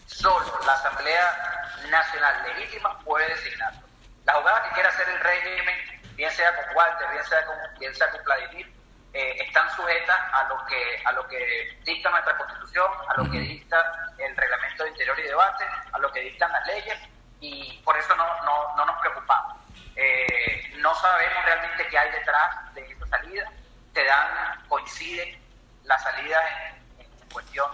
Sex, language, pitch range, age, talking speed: male, Spanish, 145-180 Hz, 30-49, 160 wpm